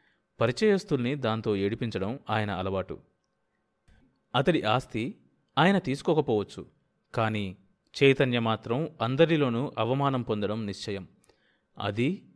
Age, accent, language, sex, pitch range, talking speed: 30-49, native, Telugu, male, 105-135 Hz, 85 wpm